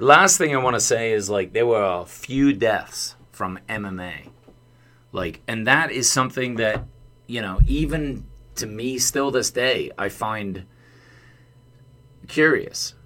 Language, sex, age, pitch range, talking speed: English, male, 30-49, 95-125 Hz, 145 wpm